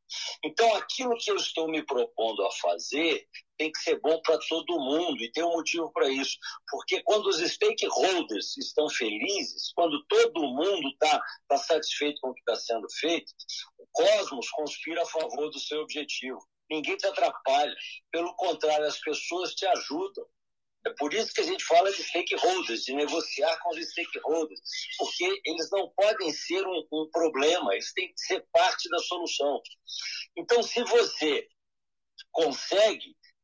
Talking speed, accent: 160 wpm, Brazilian